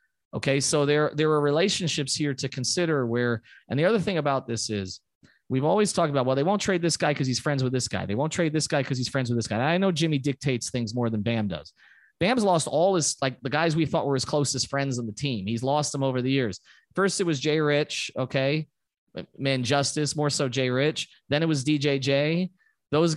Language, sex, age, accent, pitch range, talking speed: English, male, 30-49, American, 115-150 Hz, 240 wpm